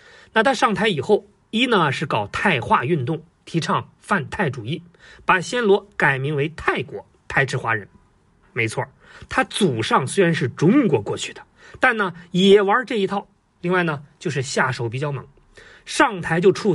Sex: male